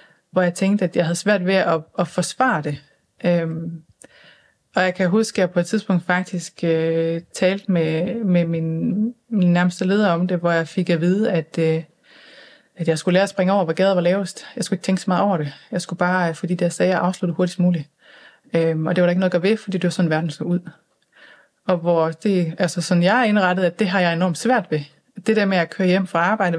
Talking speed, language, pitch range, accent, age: 245 wpm, Danish, 165-190 Hz, native, 30-49